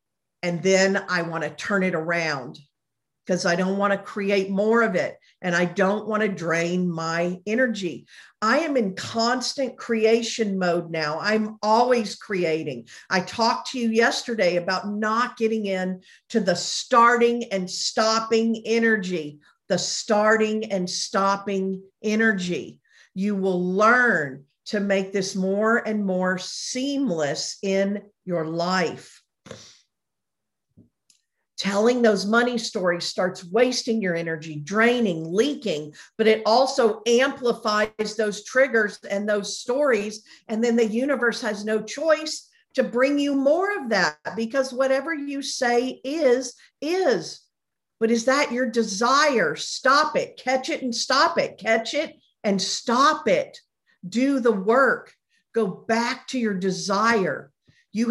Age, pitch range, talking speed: 50-69, 190-245 Hz, 135 wpm